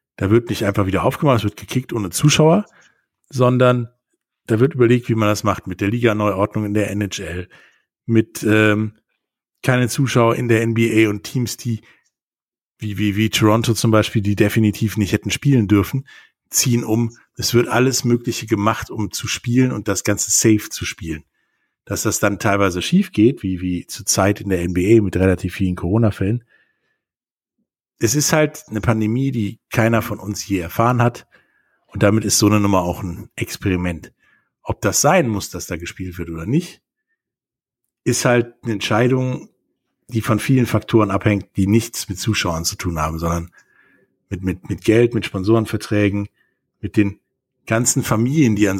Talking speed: 170 wpm